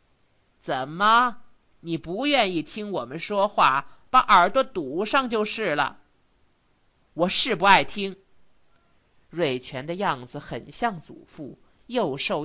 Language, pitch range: Chinese, 155-235 Hz